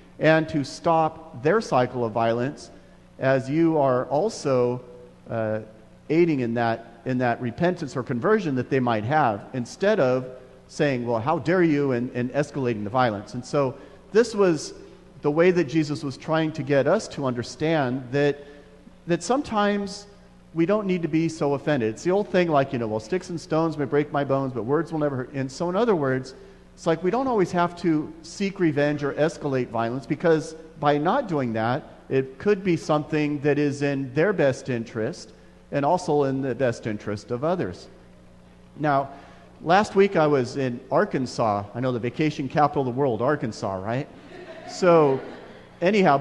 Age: 40-59